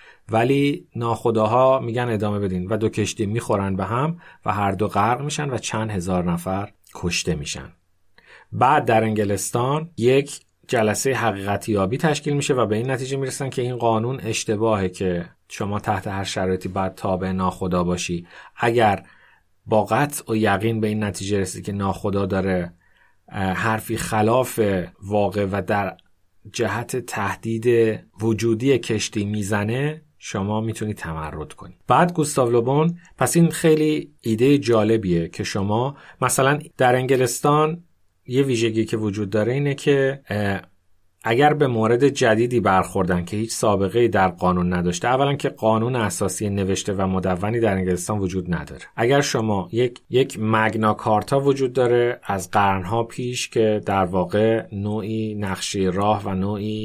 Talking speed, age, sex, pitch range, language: 140 wpm, 30-49, male, 95-125 Hz, Persian